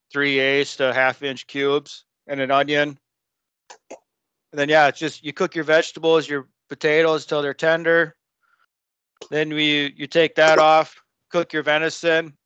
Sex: male